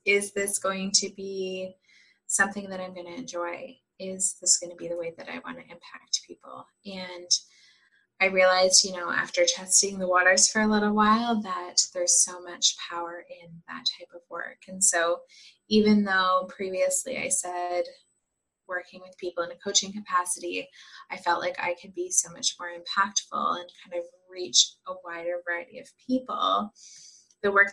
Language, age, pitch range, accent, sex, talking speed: English, 20-39, 175-200 Hz, American, female, 170 wpm